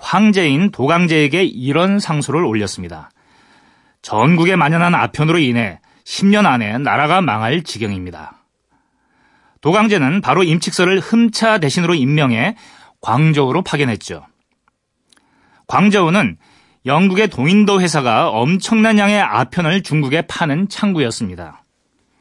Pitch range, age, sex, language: 130-195 Hz, 30-49, male, Korean